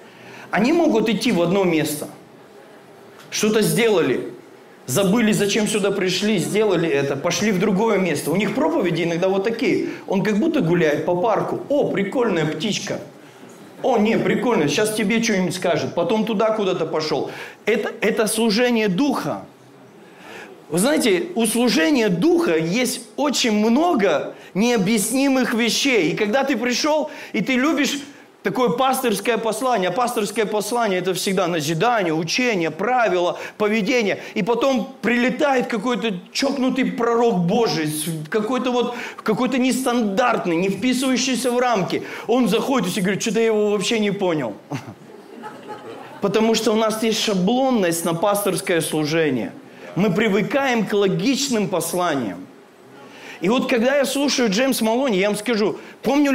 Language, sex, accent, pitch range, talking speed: Russian, male, native, 195-255 Hz, 135 wpm